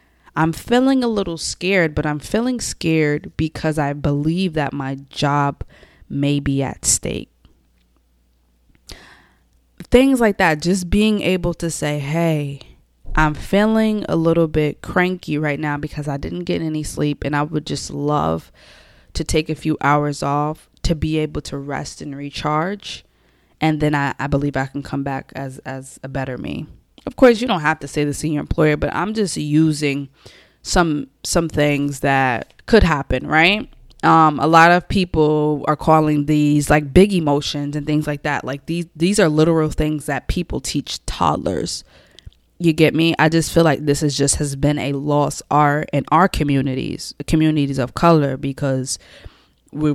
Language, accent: English, American